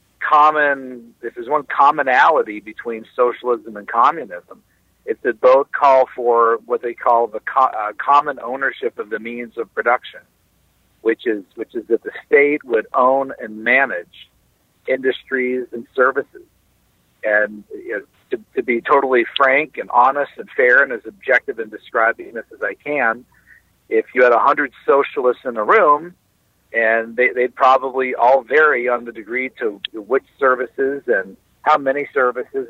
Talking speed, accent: 160 wpm, American